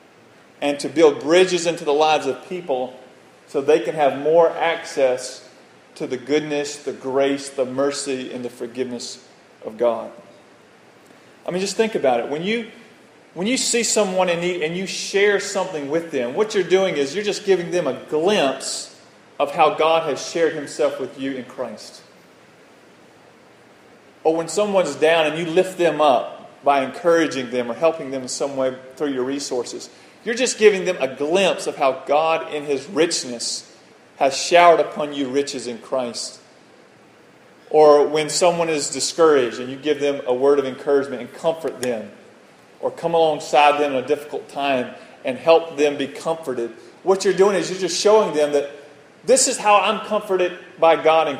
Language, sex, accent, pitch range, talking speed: English, male, American, 135-175 Hz, 175 wpm